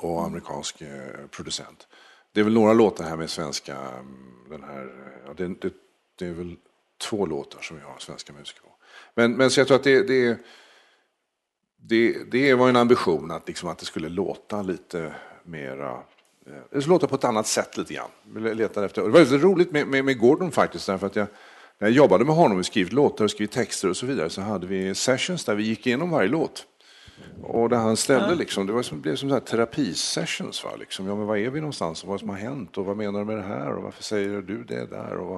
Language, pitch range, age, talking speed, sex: Swedish, 95-135 Hz, 50-69, 225 wpm, male